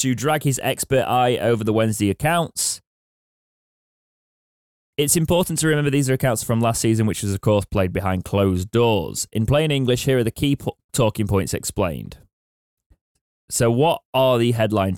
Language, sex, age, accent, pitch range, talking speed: English, male, 20-39, British, 90-120 Hz, 170 wpm